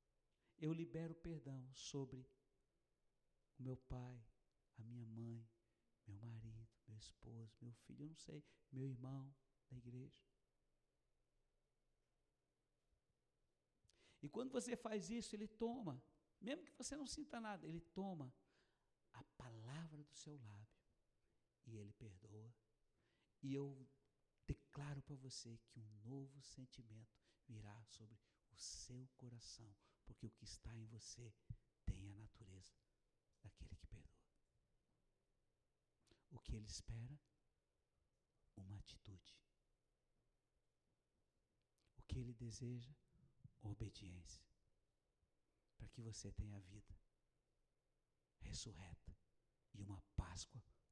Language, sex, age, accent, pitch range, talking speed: Portuguese, male, 60-79, Brazilian, 105-140 Hz, 110 wpm